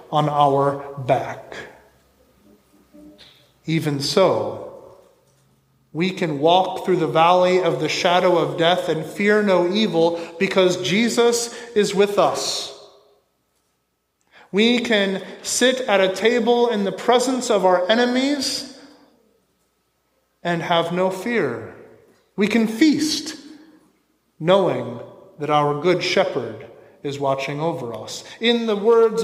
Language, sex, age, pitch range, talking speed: English, male, 30-49, 160-230 Hz, 115 wpm